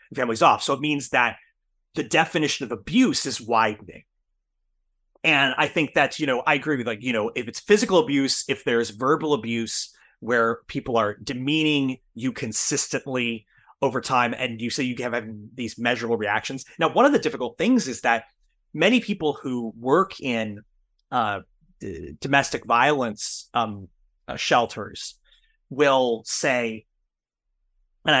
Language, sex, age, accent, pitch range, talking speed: English, male, 30-49, American, 115-150 Hz, 155 wpm